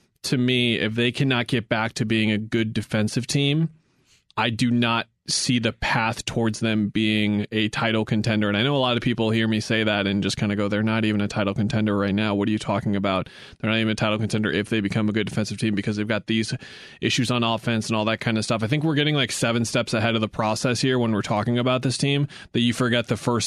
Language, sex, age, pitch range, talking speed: English, male, 20-39, 105-125 Hz, 265 wpm